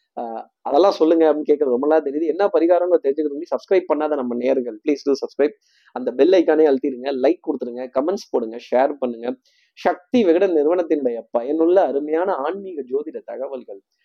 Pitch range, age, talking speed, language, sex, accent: 130-210 Hz, 20-39, 155 wpm, Tamil, male, native